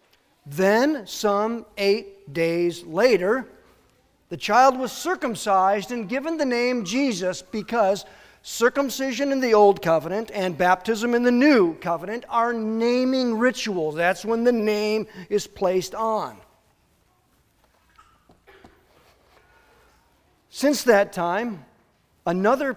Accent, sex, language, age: American, male, English, 40-59